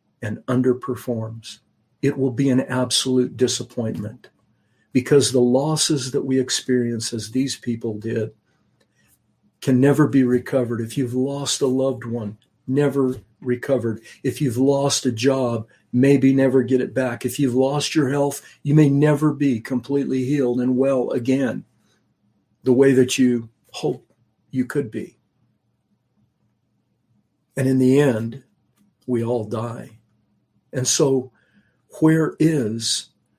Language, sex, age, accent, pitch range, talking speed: English, male, 50-69, American, 115-135 Hz, 130 wpm